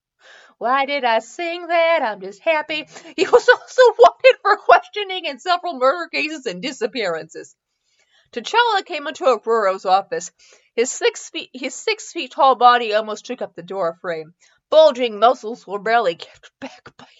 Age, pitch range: 30-49, 195-285 Hz